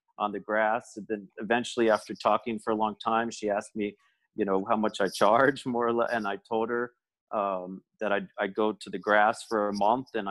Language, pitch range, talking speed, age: English, 100-115 Hz, 235 wpm, 40-59